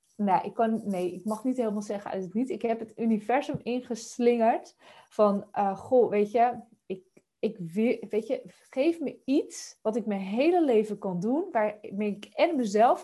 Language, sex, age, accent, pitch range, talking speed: Dutch, female, 20-39, Dutch, 190-240 Hz, 175 wpm